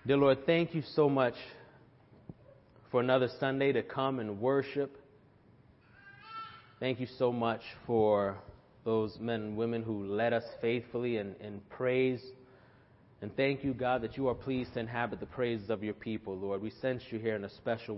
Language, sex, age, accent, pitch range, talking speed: English, male, 30-49, American, 110-135 Hz, 170 wpm